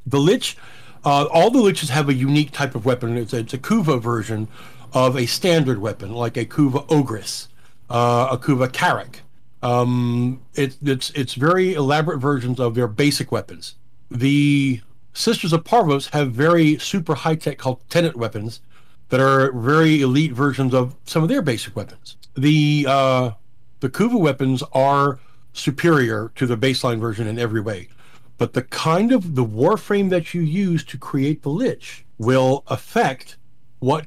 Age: 50-69